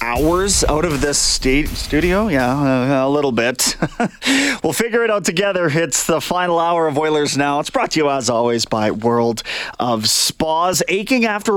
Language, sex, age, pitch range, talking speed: English, male, 30-49, 135-180 Hz, 175 wpm